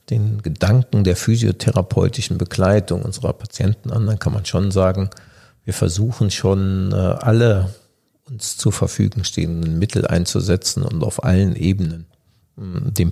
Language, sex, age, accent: German, male, 50-69, German